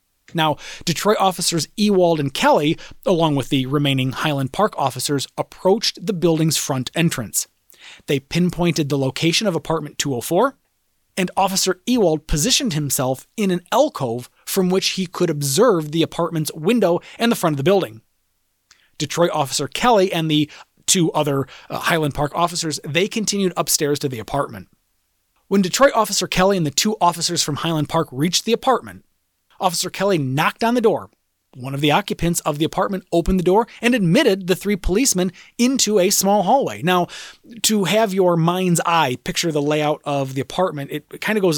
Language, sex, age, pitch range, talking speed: English, male, 30-49, 150-190 Hz, 170 wpm